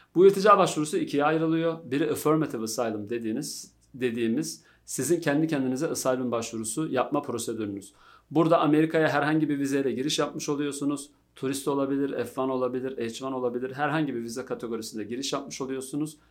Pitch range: 120-150 Hz